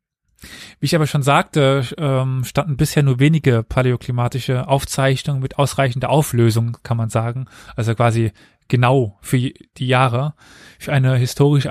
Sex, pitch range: male, 120-145 Hz